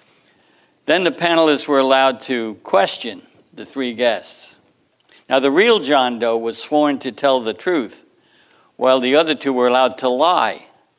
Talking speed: 160 wpm